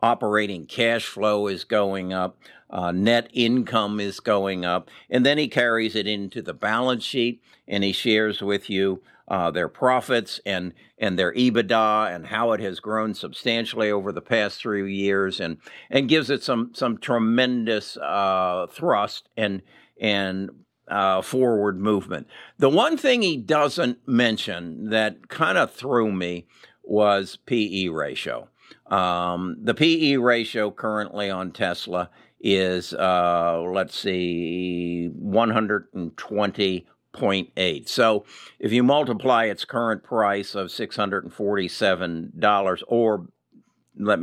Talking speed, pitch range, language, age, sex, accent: 130 wpm, 95-115 Hz, English, 60-79, male, American